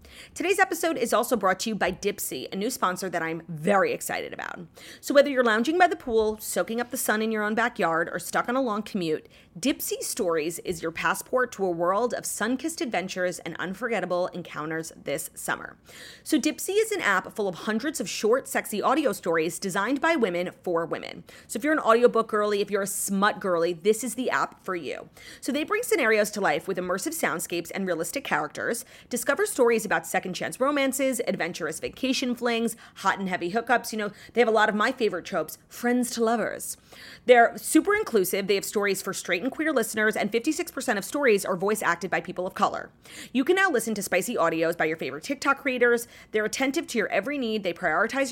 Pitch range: 185-265 Hz